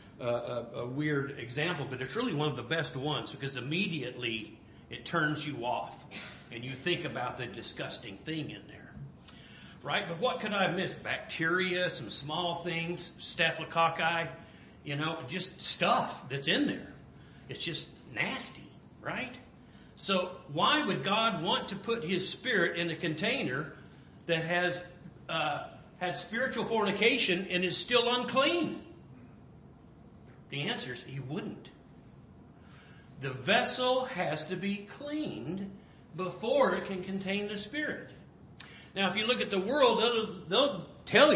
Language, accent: English, American